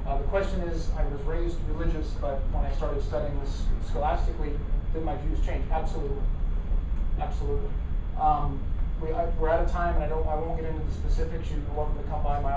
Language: English